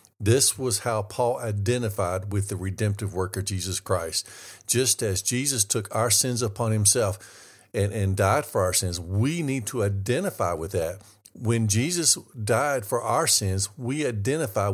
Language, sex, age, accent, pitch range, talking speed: English, male, 50-69, American, 100-125 Hz, 165 wpm